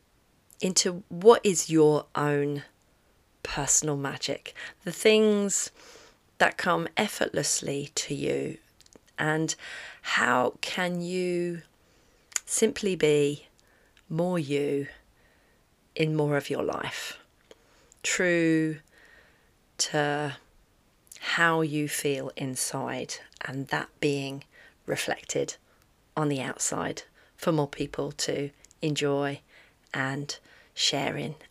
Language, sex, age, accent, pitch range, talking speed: English, female, 40-59, British, 145-170 Hz, 90 wpm